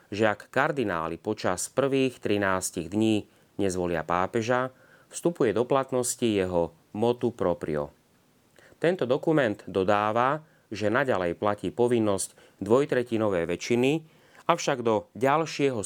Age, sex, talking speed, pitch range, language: 30-49, male, 100 wpm, 95-125 Hz, Slovak